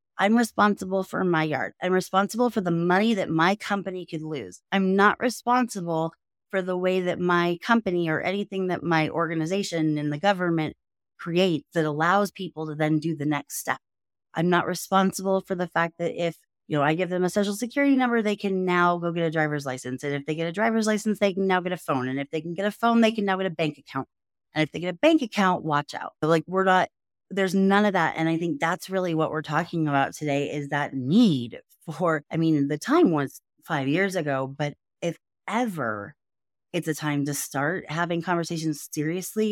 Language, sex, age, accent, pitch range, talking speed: English, female, 30-49, American, 150-190 Hz, 215 wpm